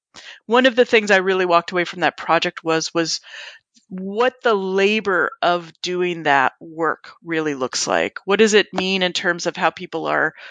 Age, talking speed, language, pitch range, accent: 40-59, 190 wpm, English, 170-210 Hz, American